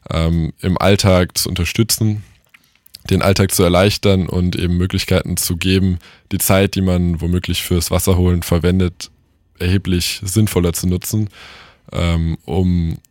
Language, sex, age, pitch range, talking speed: German, male, 20-39, 90-100 Hz, 120 wpm